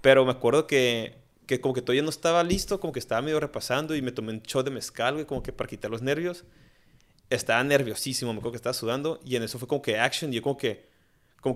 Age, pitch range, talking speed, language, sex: 30-49, 110-135 Hz, 255 wpm, Spanish, male